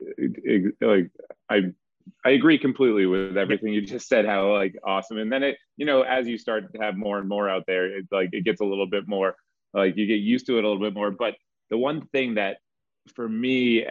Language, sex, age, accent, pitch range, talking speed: English, male, 30-49, American, 100-125 Hz, 230 wpm